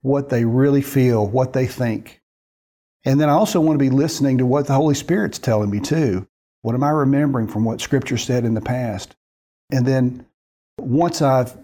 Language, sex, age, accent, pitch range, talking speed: English, male, 50-69, American, 115-145 Hz, 195 wpm